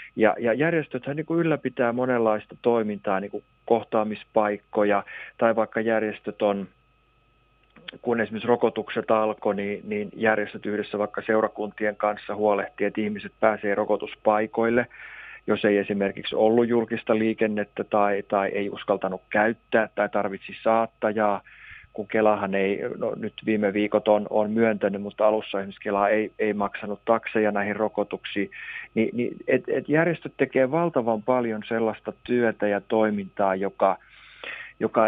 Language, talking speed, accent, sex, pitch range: Finnish, 130 wpm, native, male, 105-120 Hz